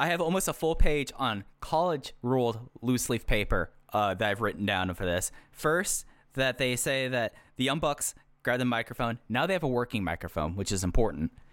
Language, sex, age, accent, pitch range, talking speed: English, male, 10-29, American, 95-125 Hz, 200 wpm